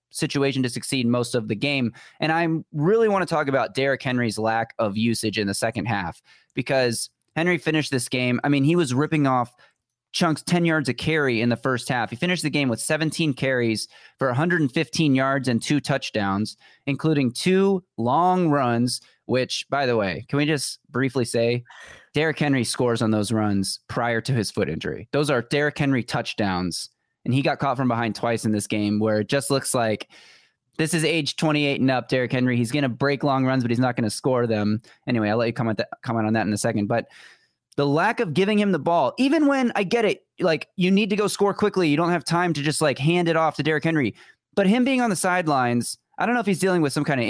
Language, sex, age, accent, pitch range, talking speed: English, male, 20-39, American, 120-160 Hz, 230 wpm